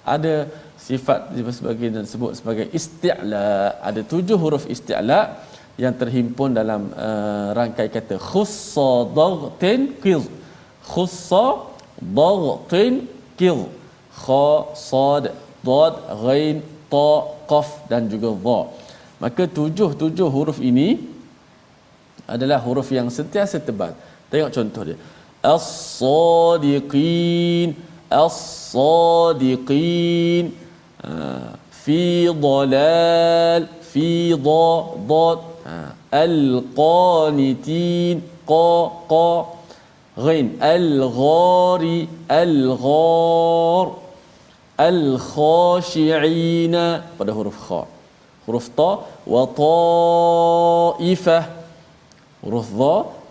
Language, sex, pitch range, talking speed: Malayalam, male, 135-170 Hz, 55 wpm